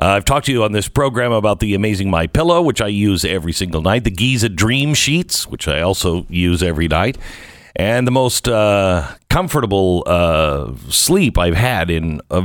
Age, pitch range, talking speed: 50-69, 90-130 Hz, 195 wpm